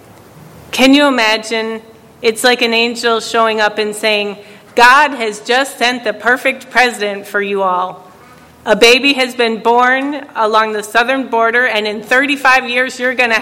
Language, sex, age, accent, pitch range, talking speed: English, female, 40-59, American, 215-245 Hz, 165 wpm